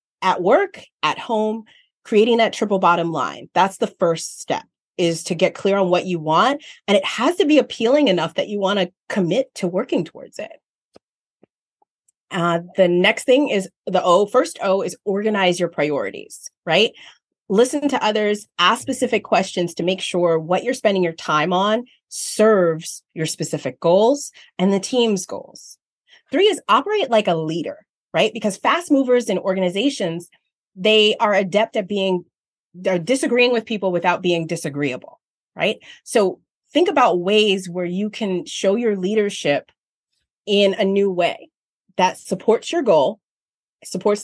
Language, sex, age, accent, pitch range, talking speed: English, female, 30-49, American, 180-240 Hz, 160 wpm